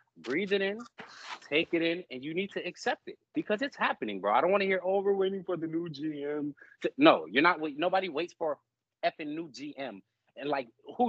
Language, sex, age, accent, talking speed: English, male, 30-49, American, 215 wpm